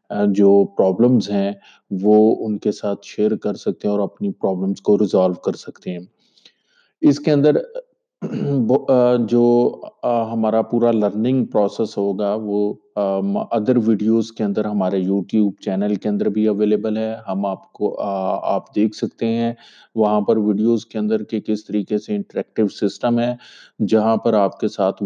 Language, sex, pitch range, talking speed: Urdu, male, 100-120 Hz, 150 wpm